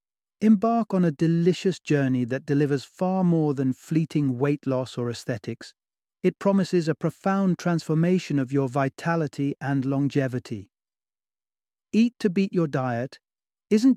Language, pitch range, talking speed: English, 135-170 Hz, 135 wpm